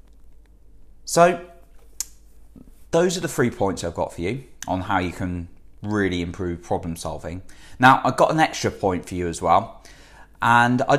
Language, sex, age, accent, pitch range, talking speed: English, male, 20-39, British, 90-120 Hz, 165 wpm